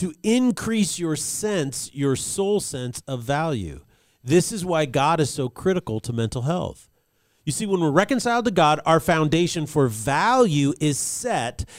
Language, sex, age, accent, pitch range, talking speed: English, male, 40-59, American, 140-190 Hz, 165 wpm